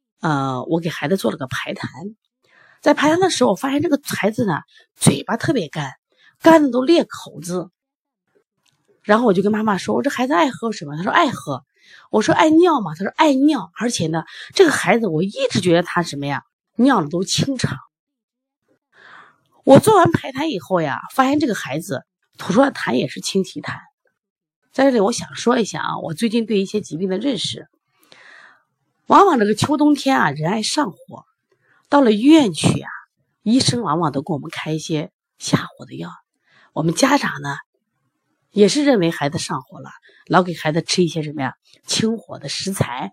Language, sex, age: Chinese, female, 30-49